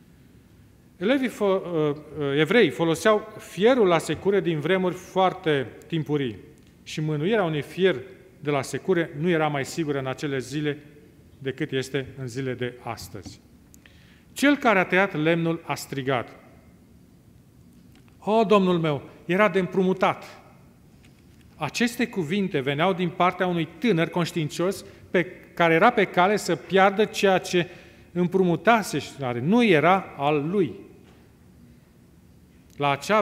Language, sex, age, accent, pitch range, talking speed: Romanian, male, 40-59, native, 145-195 Hz, 120 wpm